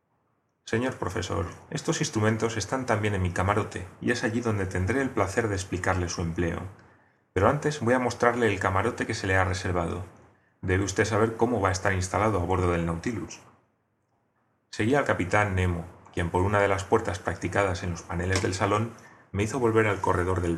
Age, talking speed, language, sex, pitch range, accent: 30-49, 190 wpm, Spanish, male, 90-115 Hz, Spanish